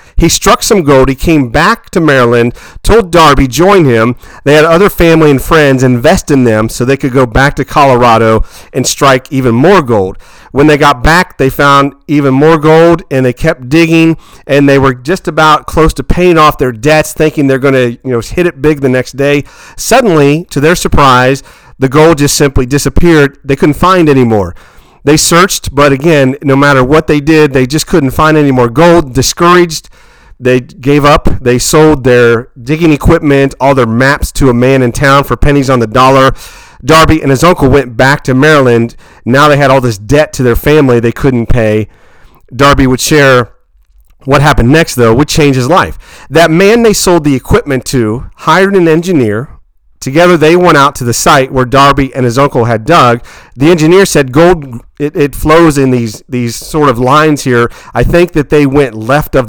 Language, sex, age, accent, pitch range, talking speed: English, male, 40-59, American, 125-155 Hz, 200 wpm